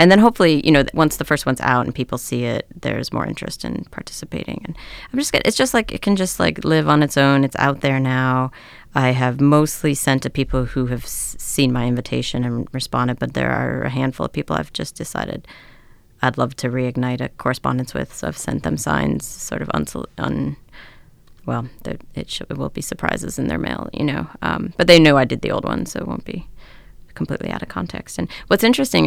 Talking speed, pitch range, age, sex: 230 wpm, 125-175 Hz, 30-49, female